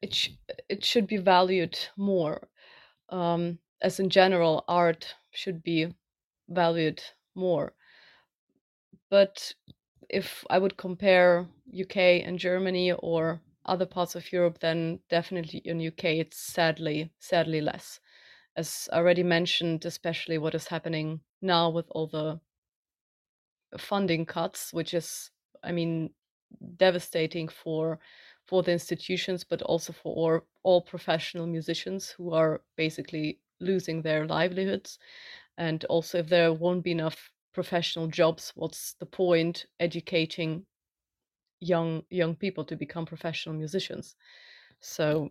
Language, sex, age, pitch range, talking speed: English, female, 30-49, 160-180 Hz, 120 wpm